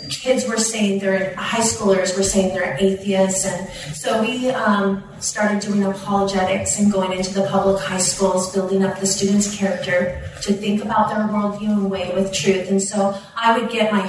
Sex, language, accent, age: female, English, American, 30-49